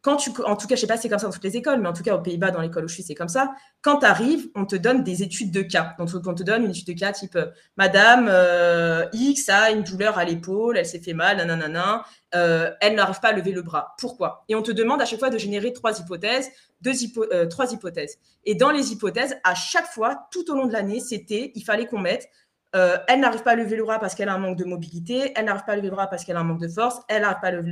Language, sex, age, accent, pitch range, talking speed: French, female, 20-39, French, 185-240 Hz, 305 wpm